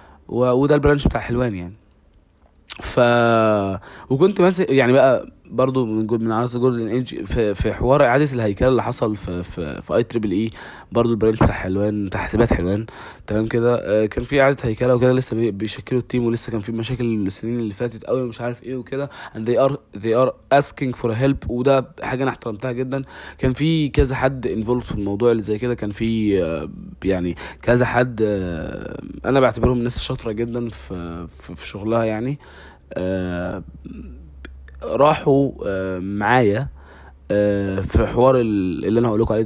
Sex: male